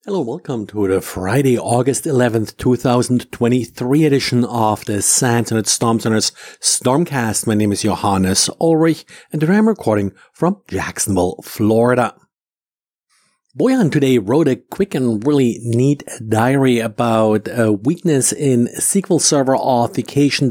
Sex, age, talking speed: male, 50-69, 130 wpm